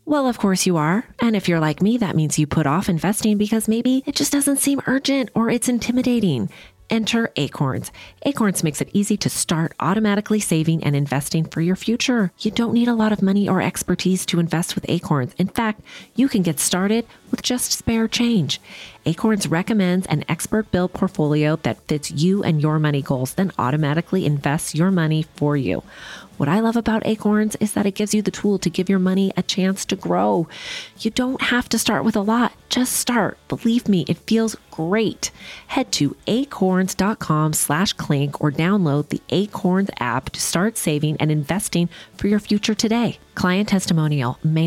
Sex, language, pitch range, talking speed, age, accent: female, English, 145-210 Hz, 190 wpm, 30-49, American